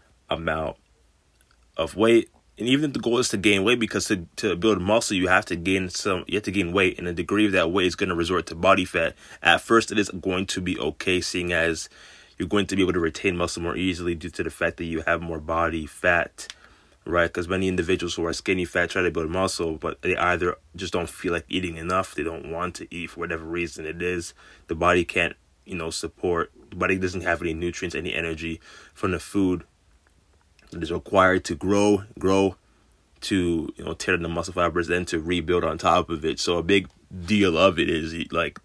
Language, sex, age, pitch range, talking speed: English, male, 20-39, 85-95 Hz, 225 wpm